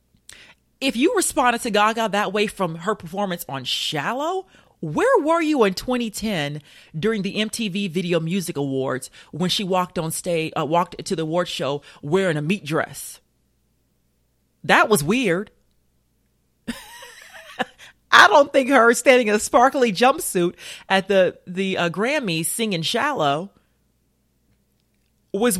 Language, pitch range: English, 155-215 Hz